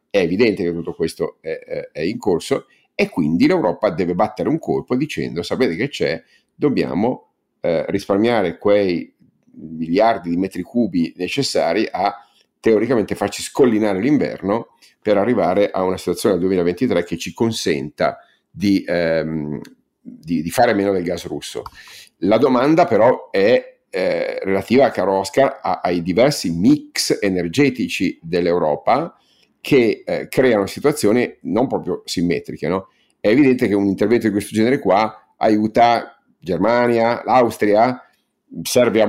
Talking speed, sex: 135 wpm, male